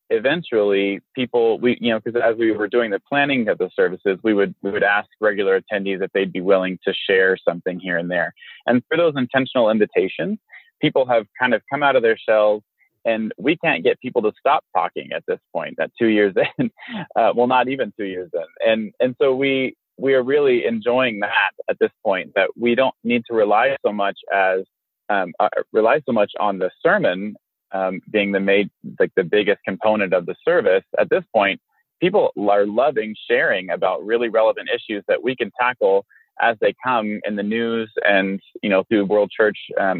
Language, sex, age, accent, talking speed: English, male, 30-49, American, 205 wpm